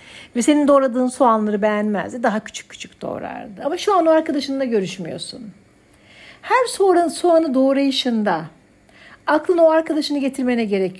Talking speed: 125 wpm